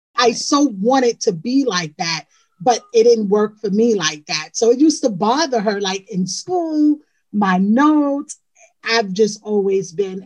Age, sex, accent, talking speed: 30-49, female, American, 175 wpm